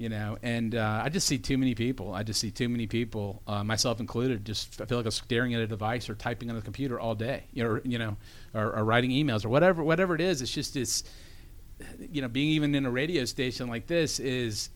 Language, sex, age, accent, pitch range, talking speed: English, male, 40-59, American, 110-145 Hz, 260 wpm